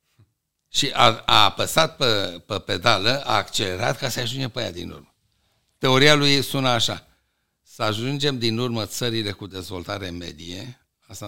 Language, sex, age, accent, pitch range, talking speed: Romanian, male, 60-79, native, 90-120 Hz, 155 wpm